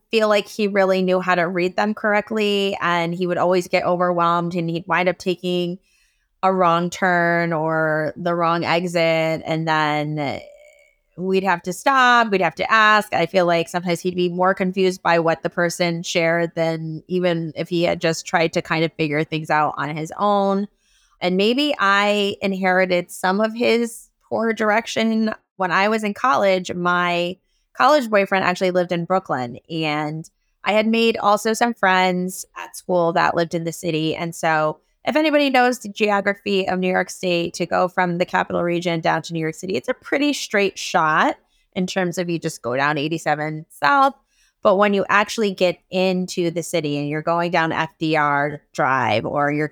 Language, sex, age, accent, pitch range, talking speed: English, female, 20-39, American, 165-205 Hz, 185 wpm